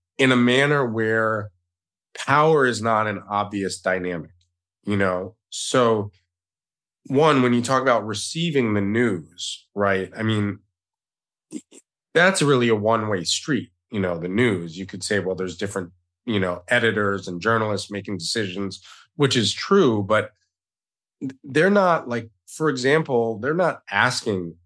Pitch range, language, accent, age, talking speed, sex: 95-125 Hz, English, American, 30-49, 140 wpm, male